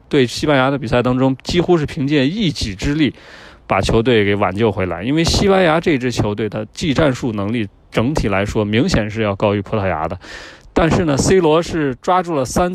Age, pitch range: 20-39, 110-155 Hz